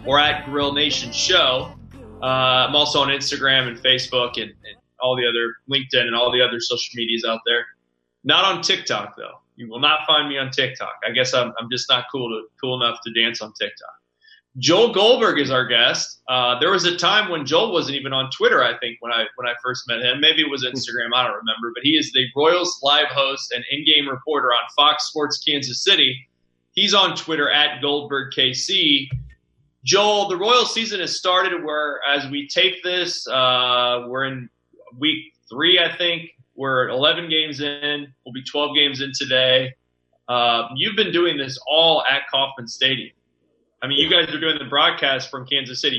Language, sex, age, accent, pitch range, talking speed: English, male, 20-39, American, 120-150 Hz, 200 wpm